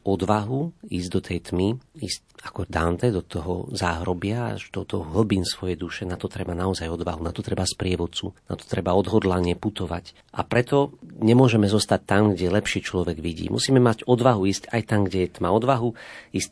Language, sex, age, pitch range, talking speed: Slovak, male, 40-59, 90-110 Hz, 180 wpm